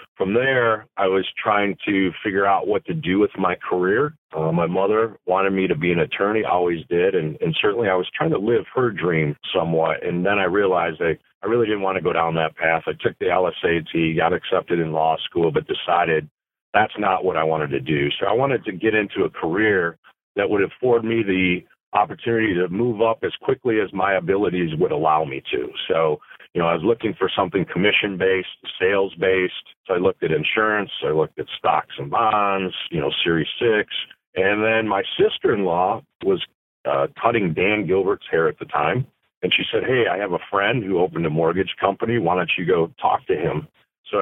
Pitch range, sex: 85-120 Hz, male